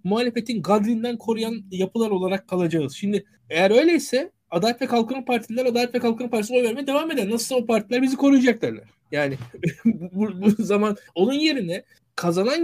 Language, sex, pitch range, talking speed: Turkish, male, 170-235 Hz, 155 wpm